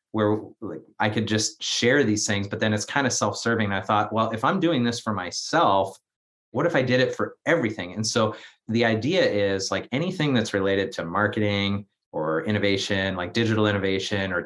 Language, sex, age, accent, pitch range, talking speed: English, male, 30-49, American, 95-115 Hz, 200 wpm